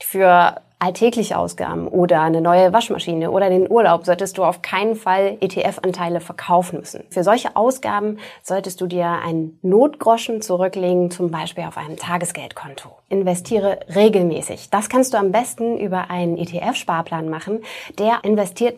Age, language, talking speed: 30-49, German, 145 wpm